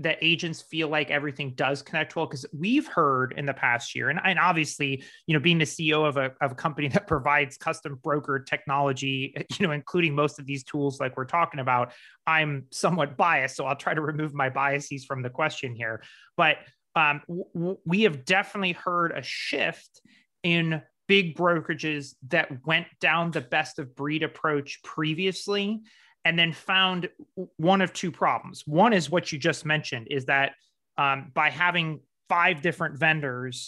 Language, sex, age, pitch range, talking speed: English, male, 30-49, 140-165 Hz, 175 wpm